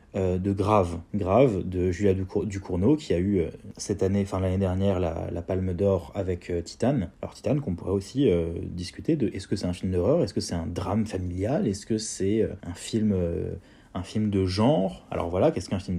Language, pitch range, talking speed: French, 90-110 Hz, 205 wpm